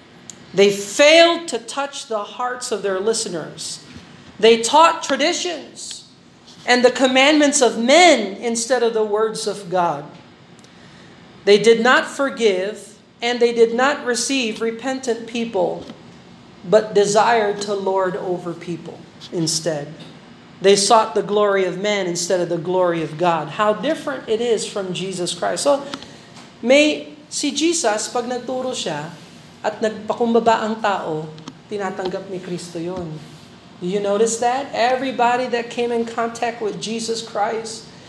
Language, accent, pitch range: Filipino, American, 185-235 Hz